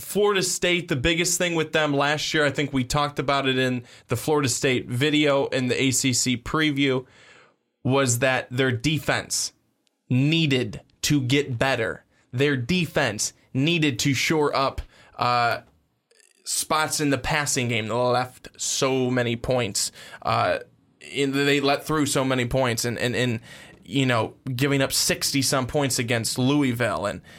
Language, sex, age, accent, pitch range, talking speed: English, male, 20-39, American, 125-145 Hz, 150 wpm